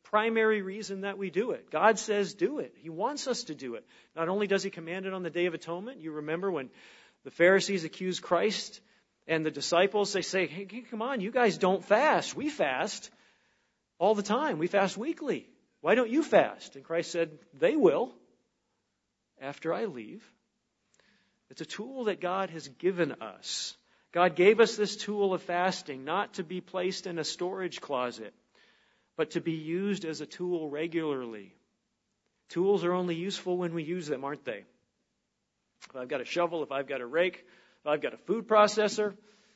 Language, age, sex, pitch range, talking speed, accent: English, 40-59, male, 150-205 Hz, 185 wpm, American